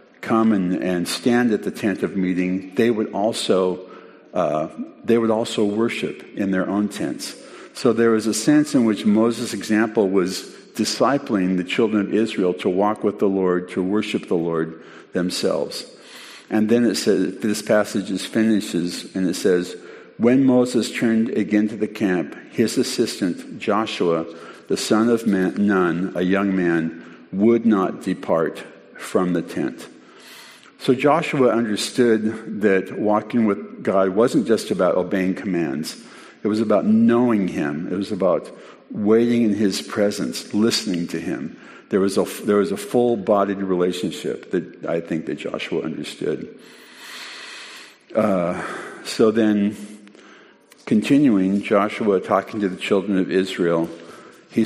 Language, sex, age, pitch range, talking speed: English, male, 50-69, 95-115 Hz, 145 wpm